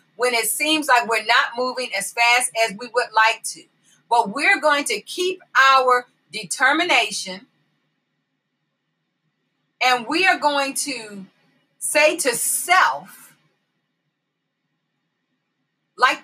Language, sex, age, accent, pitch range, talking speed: English, female, 40-59, American, 225-300 Hz, 110 wpm